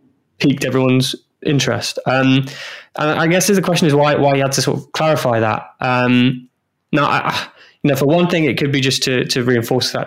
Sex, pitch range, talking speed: male, 115-135 Hz, 205 wpm